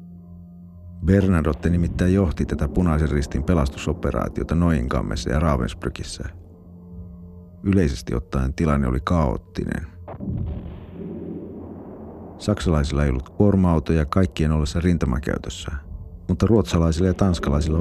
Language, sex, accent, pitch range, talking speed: Finnish, male, native, 75-90 Hz, 85 wpm